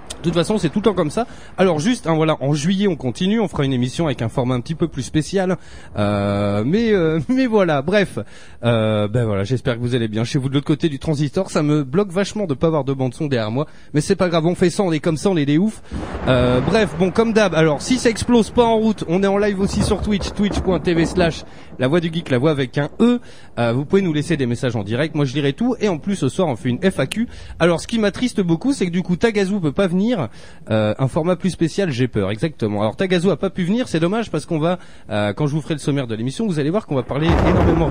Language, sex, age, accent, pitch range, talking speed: French, male, 30-49, French, 135-195 Hz, 280 wpm